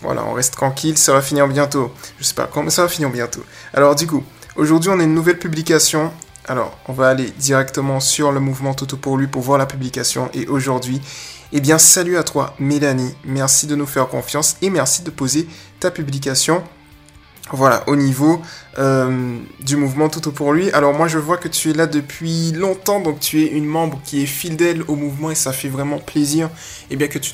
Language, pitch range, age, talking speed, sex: French, 135-155 Hz, 20-39, 215 wpm, male